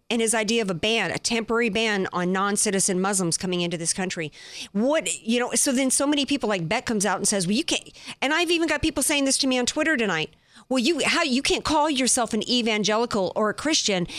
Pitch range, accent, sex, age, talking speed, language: 205-280 Hz, American, female, 50-69, 245 wpm, English